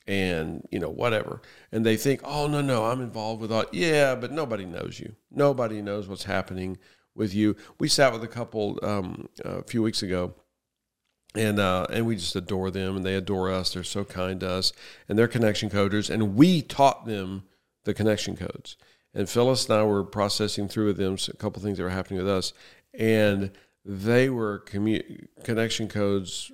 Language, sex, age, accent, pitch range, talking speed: English, male, 50-69, American, 95-115 Hz, 190 wpm